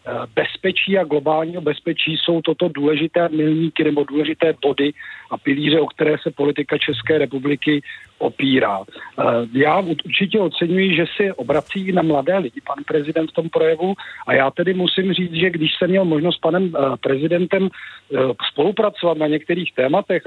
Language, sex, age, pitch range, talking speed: Czech, male, 50-69, 145-175 Hz, 150 wpm